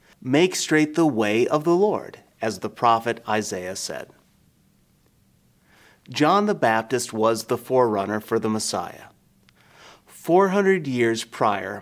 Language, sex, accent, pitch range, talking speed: English, male, American, 115-155 Hz, 125 wpm